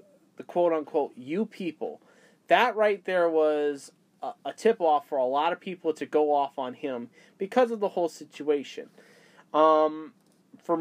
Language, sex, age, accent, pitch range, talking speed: English, male, 30-49, American, 155-200 Hz, 160 wpm